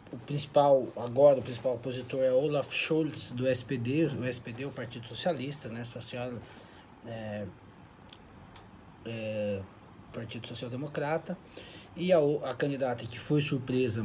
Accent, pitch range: Brazilian, 115-145 Hz